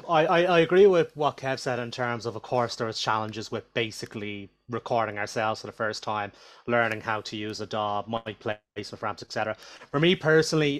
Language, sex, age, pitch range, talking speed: English, male, 30-49, 110-130 Hz, 200 wpm